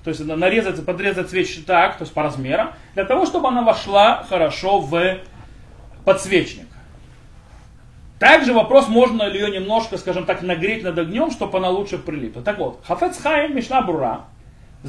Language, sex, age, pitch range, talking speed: Russian, male, 30-49, 160-230 Hz, 160 wpm